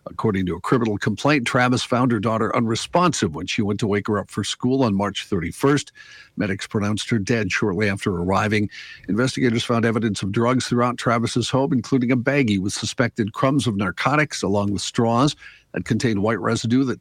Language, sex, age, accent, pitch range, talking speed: English, male, 50-69, American, 105-125 Hz, 185 wpm